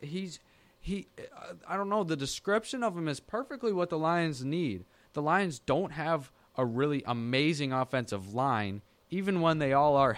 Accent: American